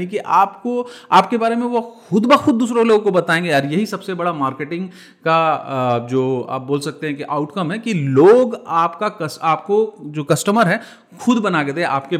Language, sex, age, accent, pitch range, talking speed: Hindi, male, 30-49, native, 150-200 Hz, 190 wpm